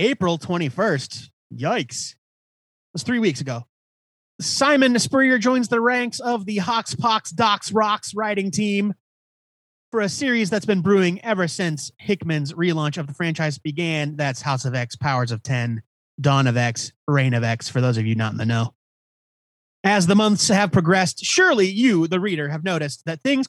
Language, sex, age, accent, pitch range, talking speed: English, male, 30-49, American, 150-220 Hz, 175 wpm